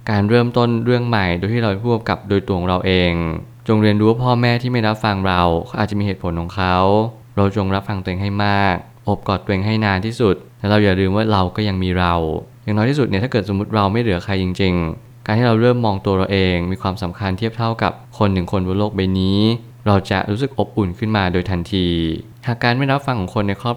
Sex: male